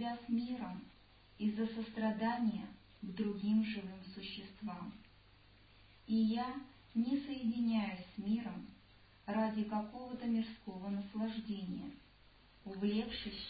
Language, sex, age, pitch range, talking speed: Russian, male, 50-69, 175-230 Hz, 85 wpm